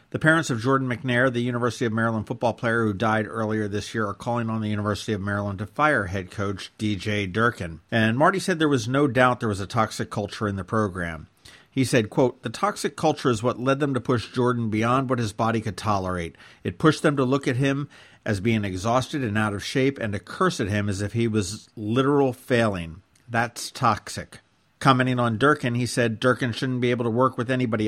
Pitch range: 110-135 Hz